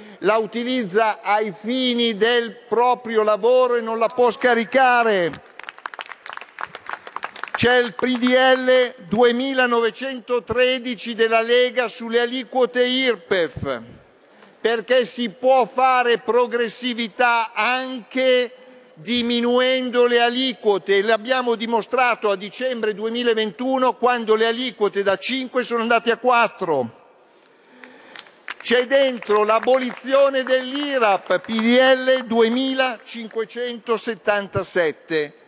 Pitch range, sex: 210-250 Hz, male